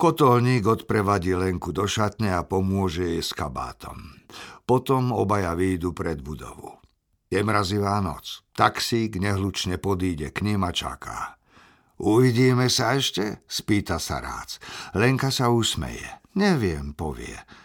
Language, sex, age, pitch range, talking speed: Slovak, male, 60-79, 90-120 Hz, 120 wpm